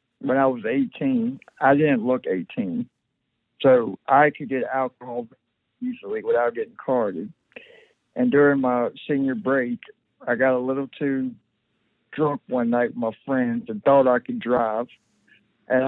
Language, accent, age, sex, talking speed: English, American, 60-79, male, 145 wpm